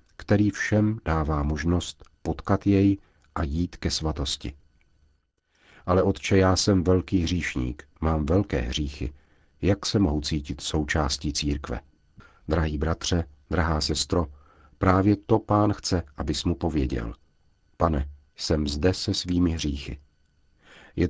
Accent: native